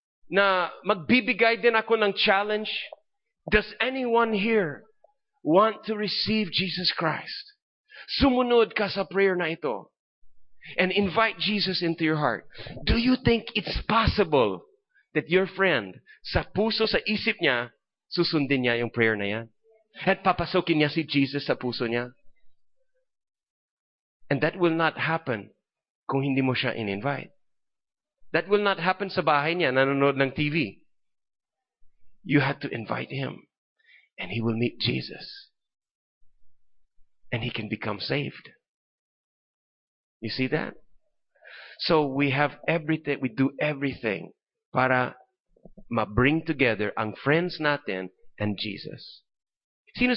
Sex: male